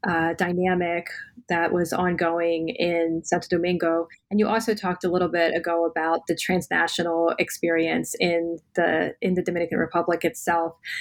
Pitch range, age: 175-205 Hz, 20-39